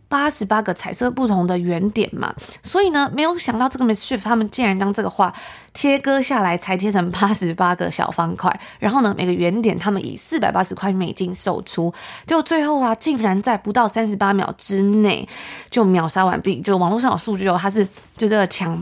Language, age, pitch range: Chinese, 20-39, 180-230 Hz